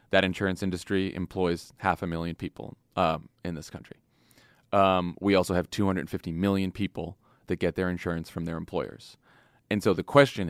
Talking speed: 170 wpm